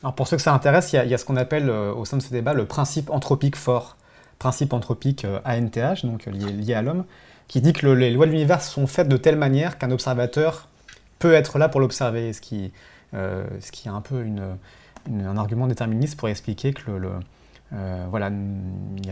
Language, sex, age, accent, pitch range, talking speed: French, male, 30-49, French, 105-140 Hz, 235 wpm